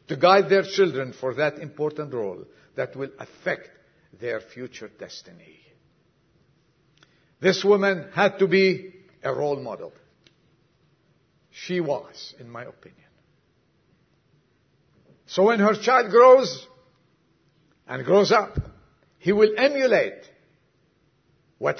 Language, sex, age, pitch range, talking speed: English, male, 60-79, 150-205 Hz, 105 wpm